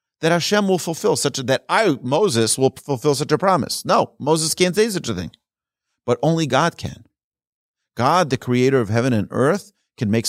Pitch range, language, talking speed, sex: 110-150 Hz, English, 200 wpm, male